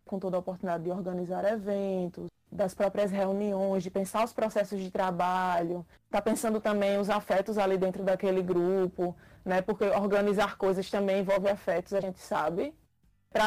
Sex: female